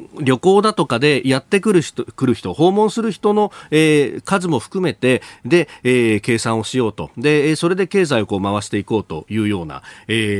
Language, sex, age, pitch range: Japanese, male, 40-59, 110-155 Hz